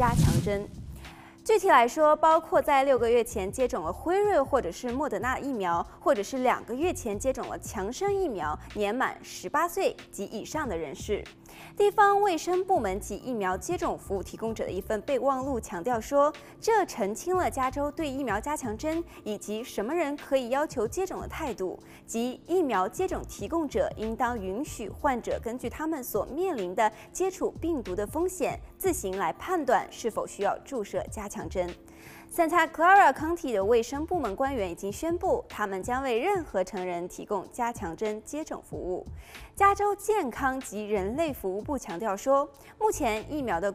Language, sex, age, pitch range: Chinese, female, 20-39, 215-350 Hz